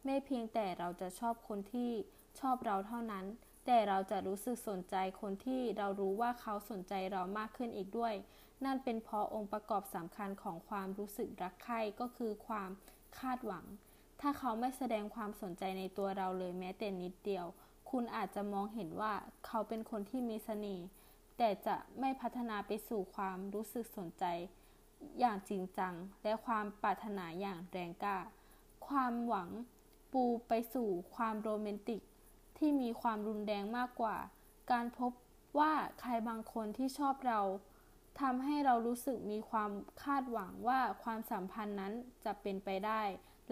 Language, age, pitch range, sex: Thai, 20-39, 195-240 Hz, female